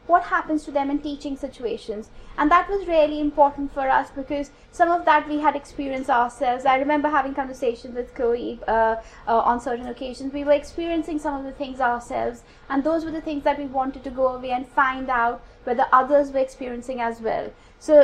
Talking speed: 205 wpm